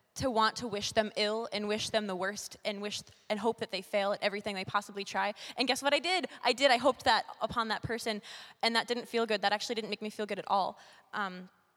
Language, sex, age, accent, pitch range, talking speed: English, female, 20-39, American, 185-215 Hz, 265 wpm